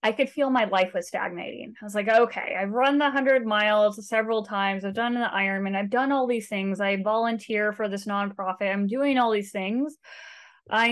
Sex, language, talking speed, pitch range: female, English, 210 wpm, 200-245 Hz